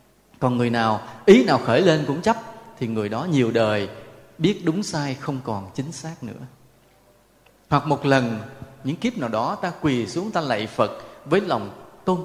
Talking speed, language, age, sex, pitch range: 185 wpm, Vietnamese, 20-39, male, 120-180 Hz